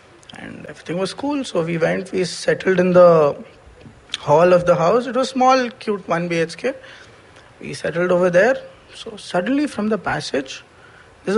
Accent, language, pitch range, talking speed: native, Hindi, 155-195 Hz, 165 wpm